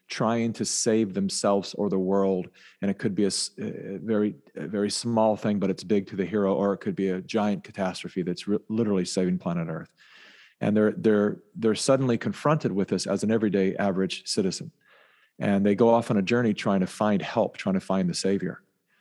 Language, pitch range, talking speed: English, 95-110 Hz, 200 wpm